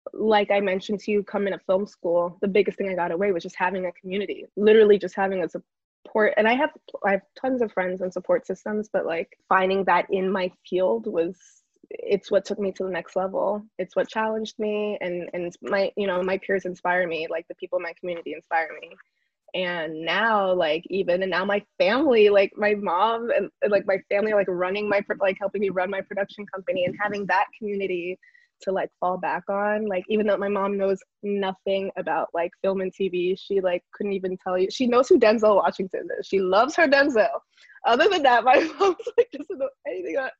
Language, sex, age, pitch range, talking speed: English, female, 20-39, 185-215 Hz, 220 wpm